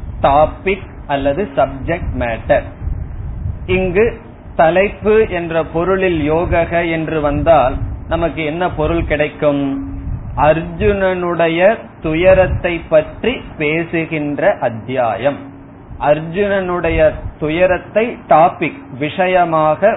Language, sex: Tamil, male